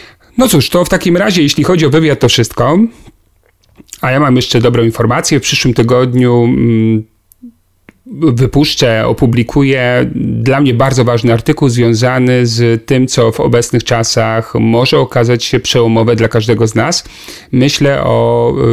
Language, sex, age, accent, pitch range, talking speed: Polish, male, 40-59, native, 115-145 Hz, 145 wpm